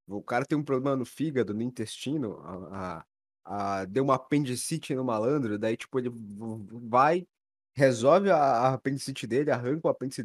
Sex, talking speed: male, 170 wpm